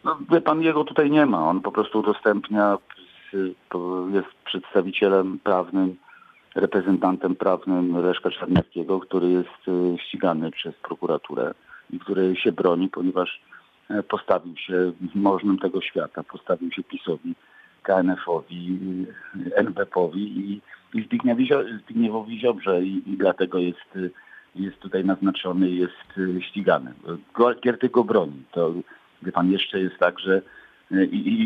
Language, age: Polish, 50-69